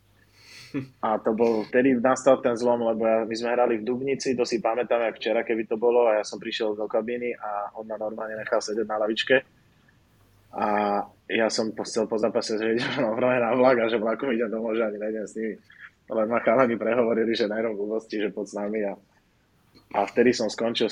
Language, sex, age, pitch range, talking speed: Slovak, male, 20-39, 105-120 Hz, 205 wpm